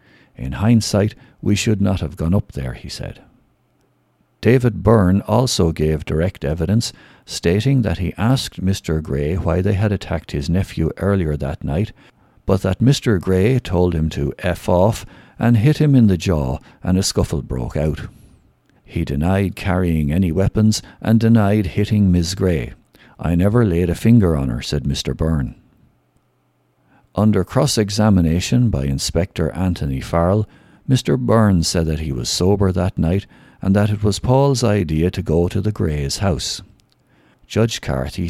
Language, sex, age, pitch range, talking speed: English, male, 60-79, 80-110 Hz, 160 wpm